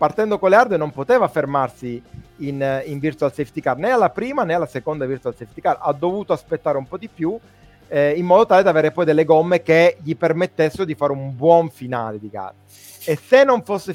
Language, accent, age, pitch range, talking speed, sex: Italian, native, 30-49, 130-175 Hz, 220 wpm, male